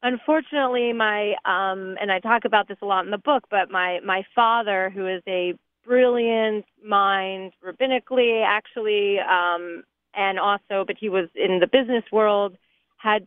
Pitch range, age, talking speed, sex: 190-225 Hz, 30-49, 160 wpm, female